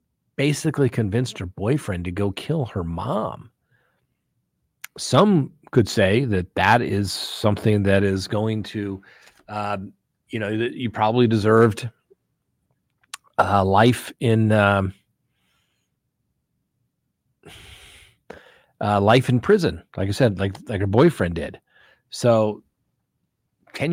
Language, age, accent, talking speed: English, 40-59, American, 115 wpm